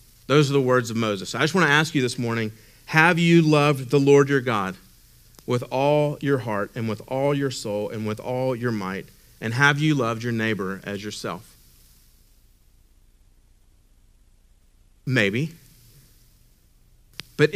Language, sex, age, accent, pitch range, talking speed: English, male, 40-59, American, 115-145 Hz, 155 wpm